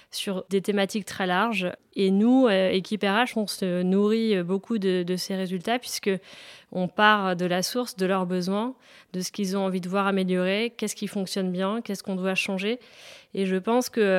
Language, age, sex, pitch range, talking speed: French, 30-49, female, 185-210 Hz, 190 wpm